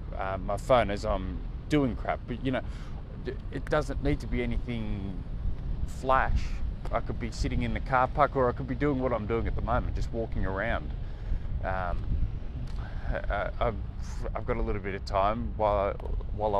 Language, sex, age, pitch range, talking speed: English, male, 20-39, 85-125 Hz, 175 wpm